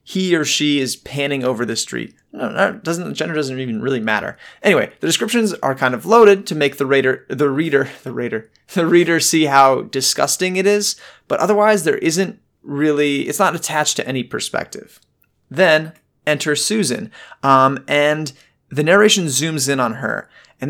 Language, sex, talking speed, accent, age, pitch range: English, male, 170 wpm, American, 30-49, 130-170 Hz